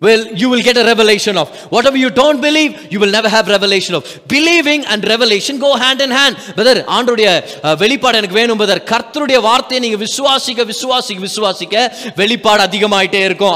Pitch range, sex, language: 200-260 Hz, male, Tamil